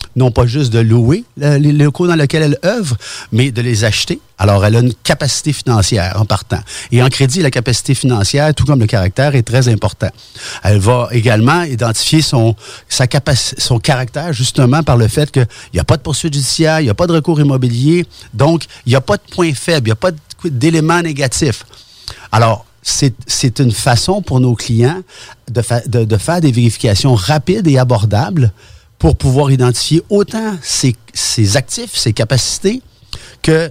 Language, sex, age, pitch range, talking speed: French, male, 50-69, 105-145 Hz, 190 wpm